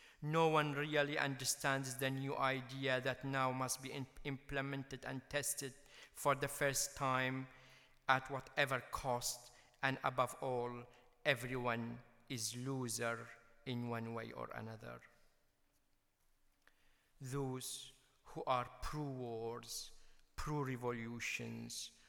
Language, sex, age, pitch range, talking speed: English, male, 50-69, 115-135 Hz, 100 wpm